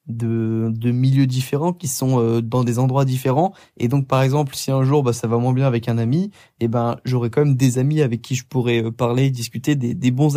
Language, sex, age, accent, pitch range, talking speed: French, male, 20-39, French, 125-150 Hz, 255 wpm